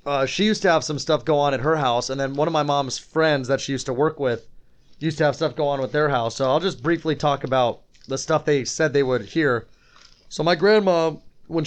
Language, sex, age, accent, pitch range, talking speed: English, male, 30-49, American, 135-155 Hz, 260 wpm